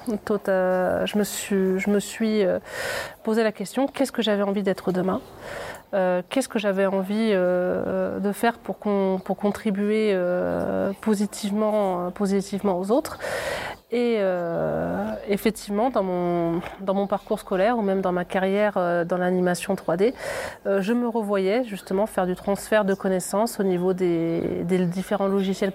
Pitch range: 185-215 Hz